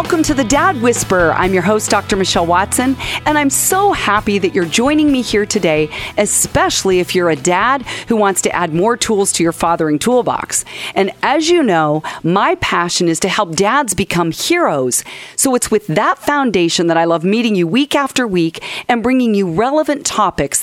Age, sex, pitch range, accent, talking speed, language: 40-59, female, 175-255 Hz, American, 190 wpm, English